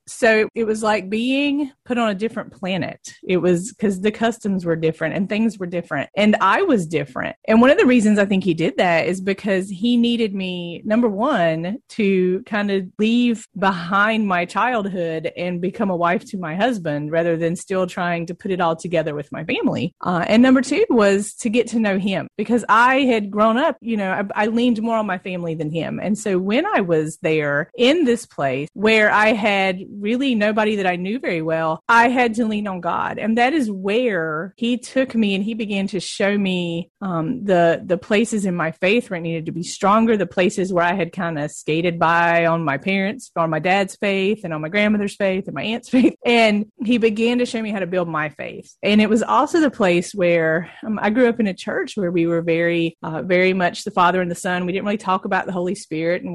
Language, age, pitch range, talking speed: English, 30-49, 175-225 Hz, 230 wpm